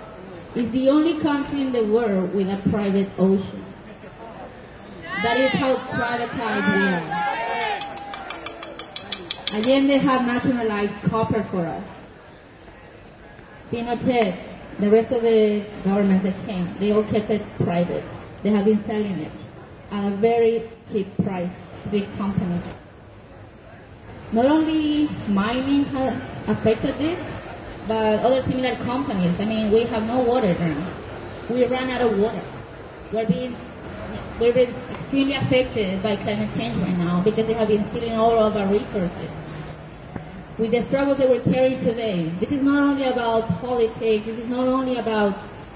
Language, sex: English, female